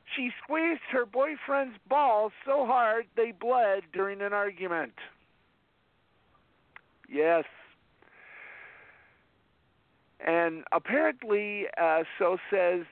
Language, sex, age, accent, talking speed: English, male, 50-69, American, 85 wpm